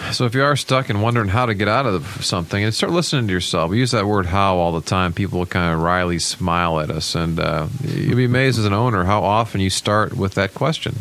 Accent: American